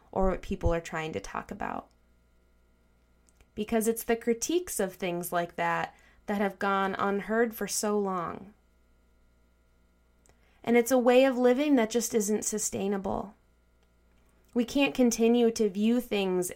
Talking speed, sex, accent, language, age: 140 wpm, female, American, English, 20-39